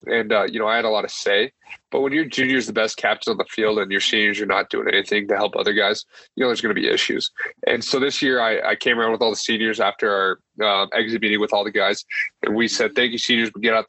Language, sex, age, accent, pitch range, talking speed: English, male, 20-39, American, 105-125 Hz, 290 wpm